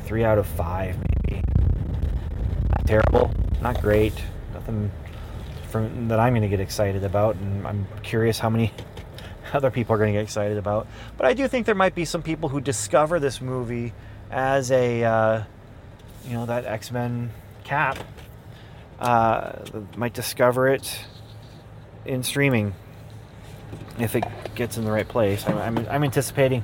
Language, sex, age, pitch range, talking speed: English, male, 30-49, 105-125 Hz, 155 wpm